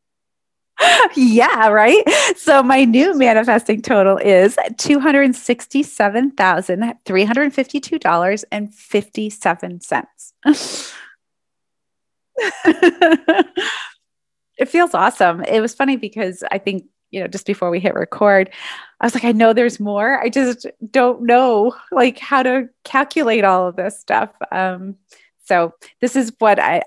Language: English